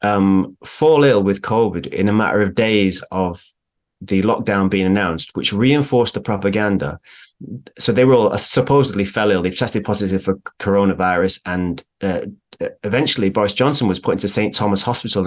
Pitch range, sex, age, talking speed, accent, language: 95-120 Hz, male, 30-49, 165 wpm, British, English